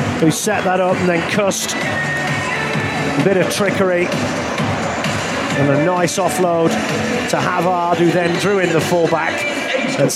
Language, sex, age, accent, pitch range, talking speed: English, male, 30-49, British, 155-195 Hz, 140 wpm